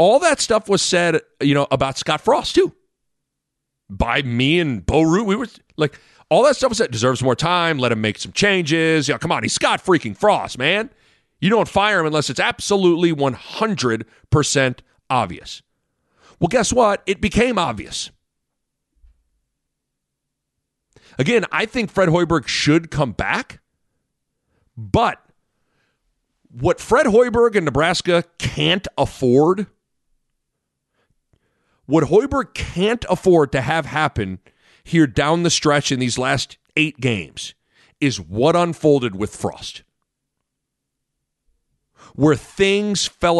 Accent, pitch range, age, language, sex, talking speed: American, 135-205 Hz, 40-59, English, male, 135 wpm